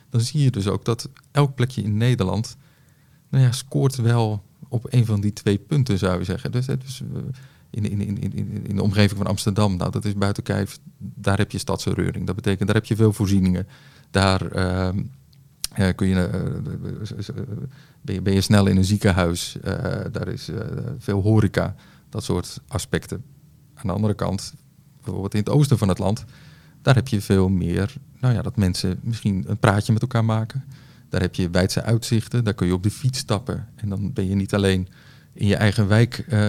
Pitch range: 100-130 Hz